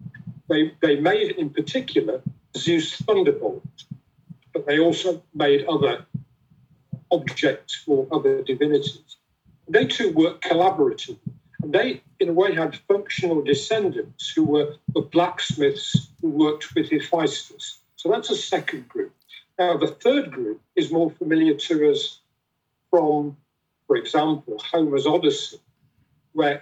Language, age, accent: English, 50-69, British